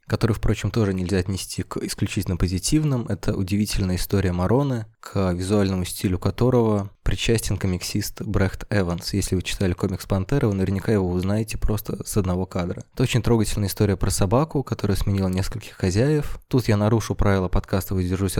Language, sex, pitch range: Russian, male, 95-115 Hz